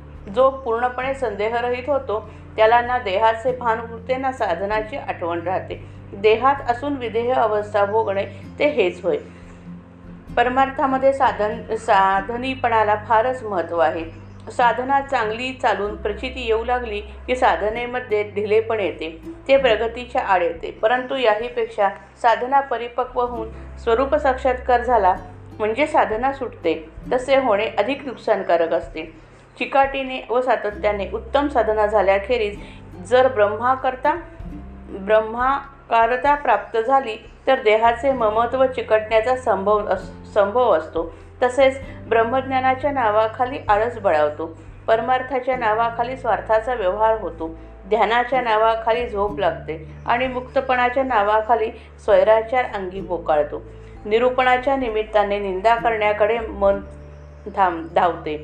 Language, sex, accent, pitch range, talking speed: Marathi, female, native, 200-255 Hz, 80 wpm